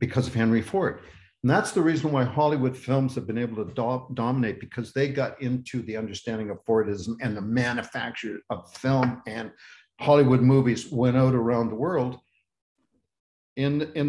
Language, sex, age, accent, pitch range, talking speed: English, male, 60-79, American, 115-145 Hz, 170 wpm